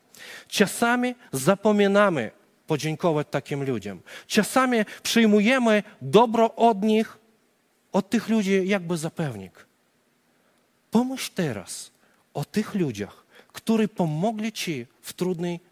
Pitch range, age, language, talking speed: 170-225 Hz, 40-59, Polish, 95 wpm